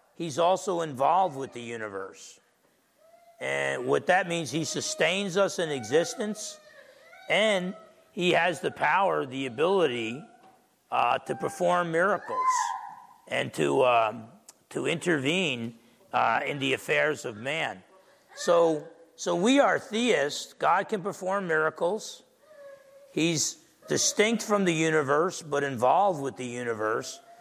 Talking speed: 125 wpm